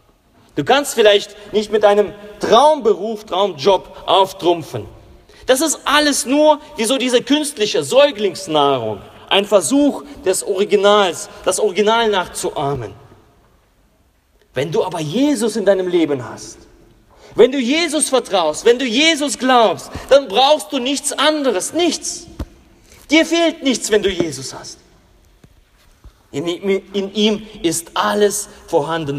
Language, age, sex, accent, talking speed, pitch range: German, 40-59, male, German, 120 wpm, 185-275 Hz